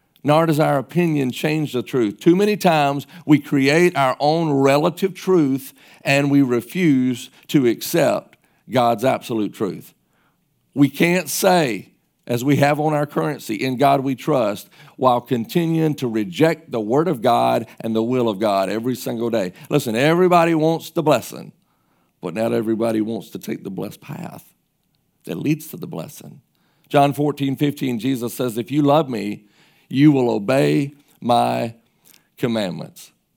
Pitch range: 125-155 Hz